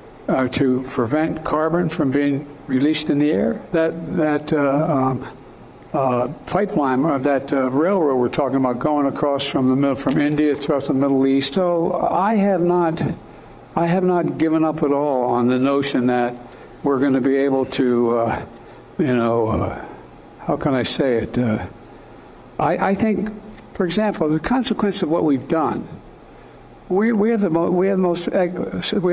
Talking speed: 175 wpm